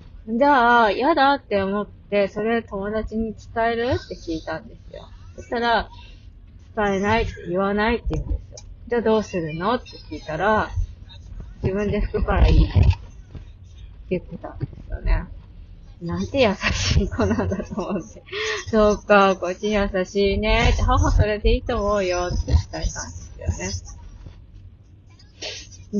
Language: Japanese